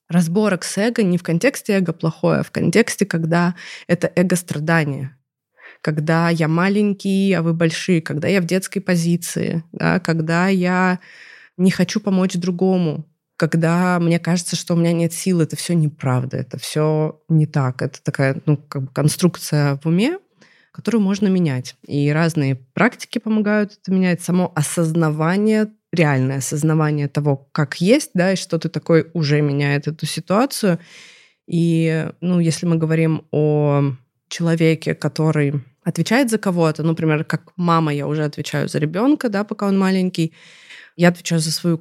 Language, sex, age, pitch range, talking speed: Russian, female, 20-39, 155-185 Hz, 155 wpm